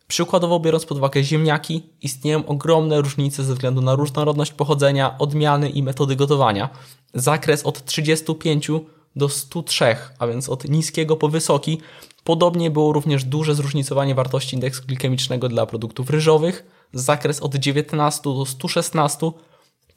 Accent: native